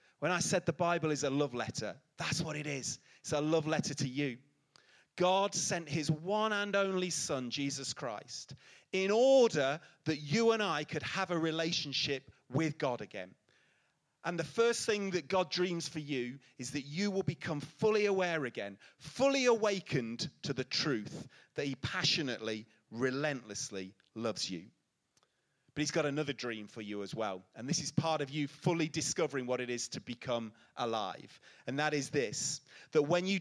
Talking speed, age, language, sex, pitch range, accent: 180 wpm, 30-49, English, male, 125-170 Hz, British